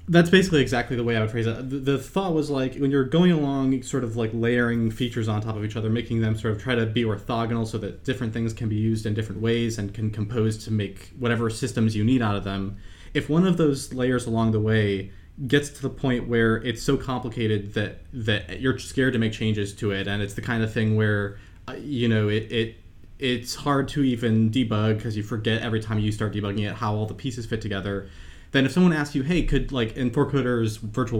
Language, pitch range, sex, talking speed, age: English, 105-130 Hz, male, 240 wpm, 20-39